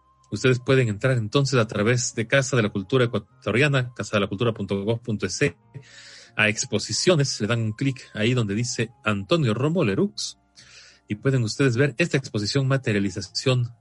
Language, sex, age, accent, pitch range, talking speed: Spanish, male, 30-49, Mexican, 100-130 Hz, 140 wpm